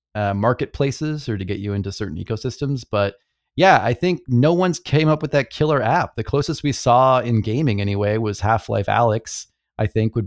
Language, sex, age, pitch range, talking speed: English, male, 30-49, 100-130 Hz, 205 wpm